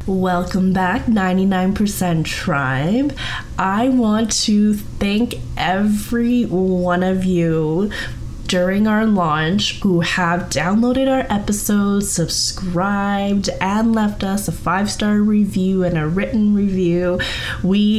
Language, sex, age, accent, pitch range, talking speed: English, female, 20-39, American, 165-205 Hz, 105 wpm